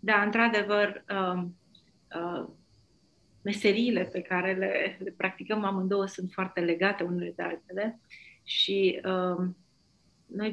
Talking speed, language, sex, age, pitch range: 90 wpm, Romanian, female, 30-49, 175-210 Hz